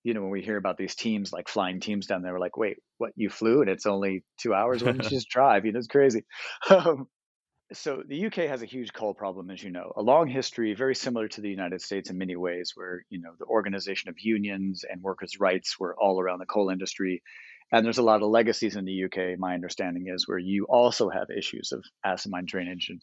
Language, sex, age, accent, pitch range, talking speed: English, male, 40-59, American, 95-120 Hz, 245 wpm